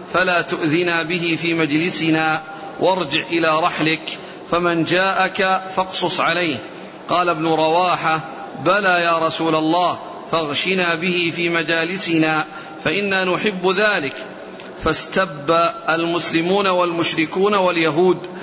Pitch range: 160-185 Hz